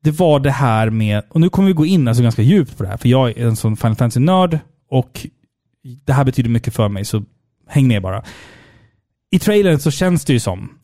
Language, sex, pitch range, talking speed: Swedish, male, 120-160 Hz, 240 wpm